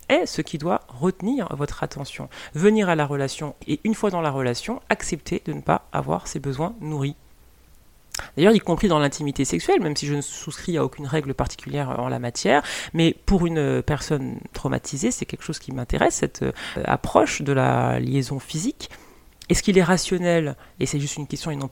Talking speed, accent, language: 195 wpm, French, French